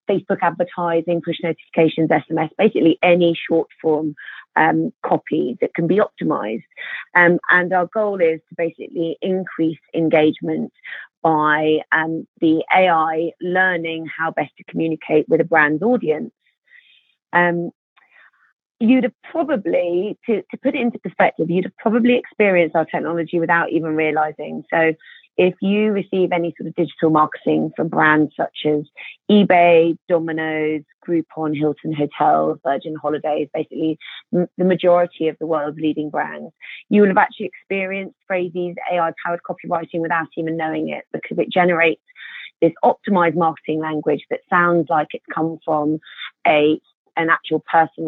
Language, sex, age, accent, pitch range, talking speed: English, female, 30-49, British, 155-180 Hz, 140 wpm